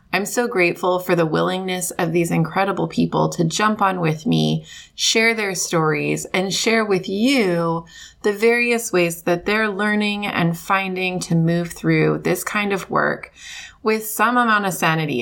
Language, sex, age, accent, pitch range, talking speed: English, female, 20-39, American, 170-210 Hz, 165 wpm